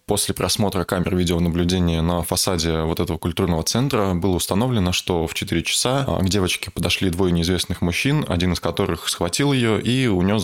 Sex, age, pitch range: male, 20-39, 85-100 Hz